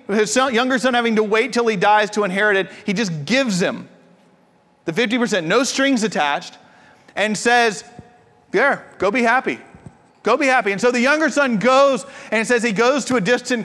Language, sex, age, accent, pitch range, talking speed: English, male, 40-59, American, 205-255 Hz, 190 wpm